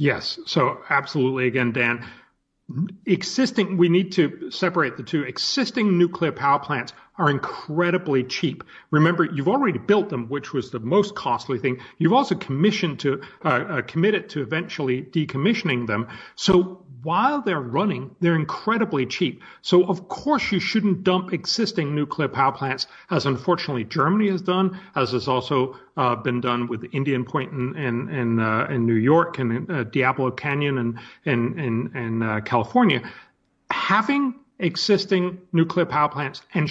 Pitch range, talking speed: 130-180 Hz, 160 wpm